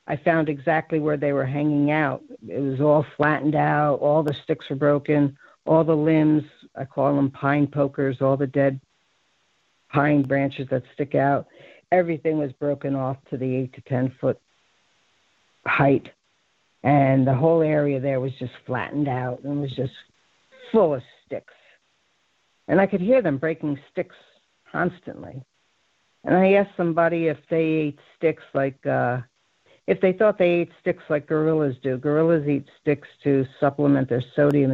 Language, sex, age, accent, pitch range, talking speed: English, female, 60-79, American, 135-160 Hz, 160 wpm